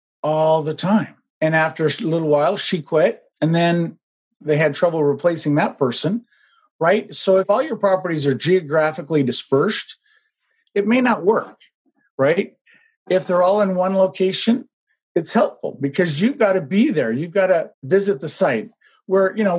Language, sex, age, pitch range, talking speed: English, male, 50-69, 160-215 Hz, 170 wpm